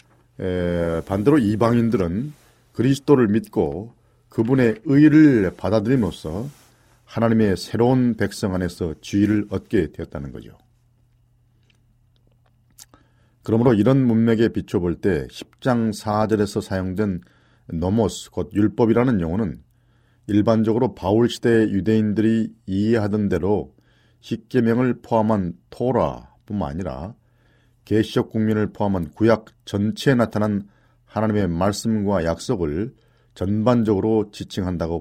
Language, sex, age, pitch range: Korean, male, 40-59, 100-120 Hz